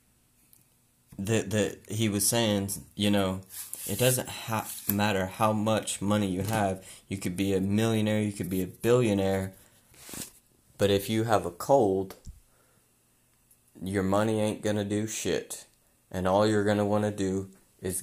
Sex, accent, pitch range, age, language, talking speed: male, American, 95-105 Hz, 20-39, English, 145 wpm